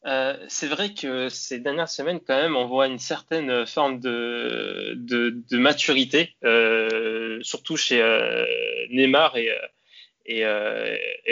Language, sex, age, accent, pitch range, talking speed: French, male, 20-39, French, 130-165 Hz, 140 wpm